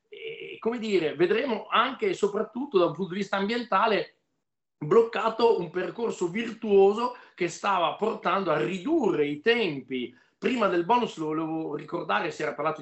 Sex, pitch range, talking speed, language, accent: male, 150-205 Hz, 155 wpm, Italian, native